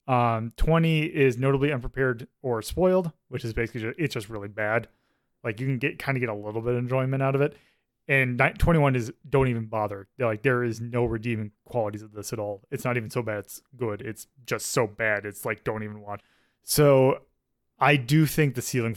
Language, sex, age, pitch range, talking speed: English, male, 20-39, 115-145 Hz, 220 wpm